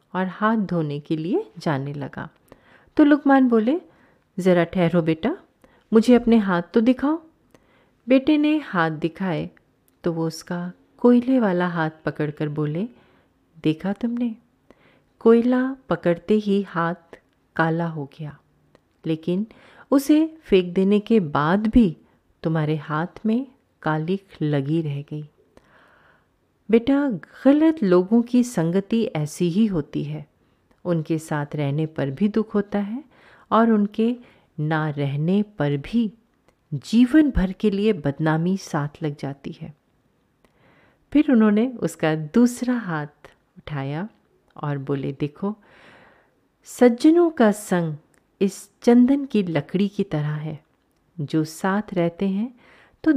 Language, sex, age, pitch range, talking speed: Hindi, female, 30-49, 155-230 Hz, 125 wpm